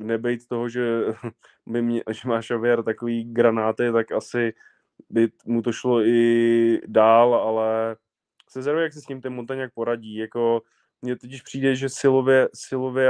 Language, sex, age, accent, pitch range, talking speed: Czech, male, 20-39, native, 115-135 Hz, 145 wpm